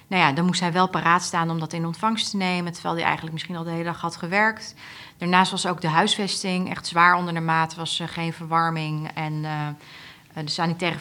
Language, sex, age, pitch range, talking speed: Dutch, female, 30-49, 160-180 Hz, 230 wpm